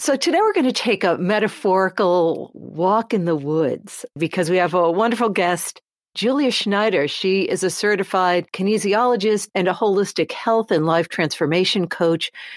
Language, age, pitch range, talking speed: English, 50-69, 175-225 Hz, 160 wpm